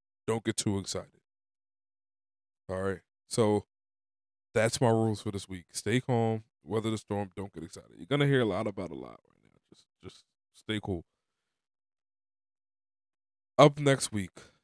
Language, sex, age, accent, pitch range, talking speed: English, male, 20-39, American, 100-115 Hz, 155 wpm